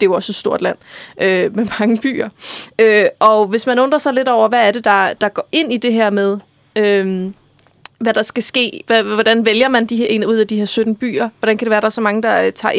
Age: 20-39